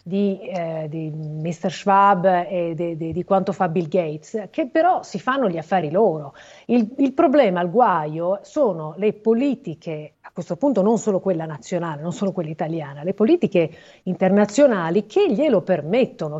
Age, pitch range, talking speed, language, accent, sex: 40-59, 175-235 Hz, 155 wpm, Italian, native, female